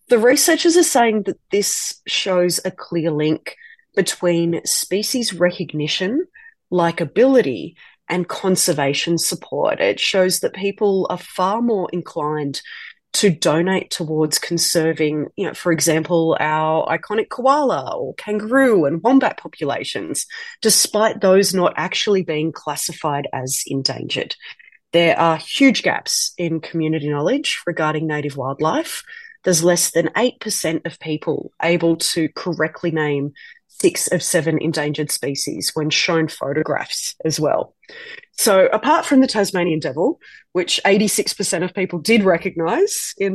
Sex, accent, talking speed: female, Australian, 125 wpm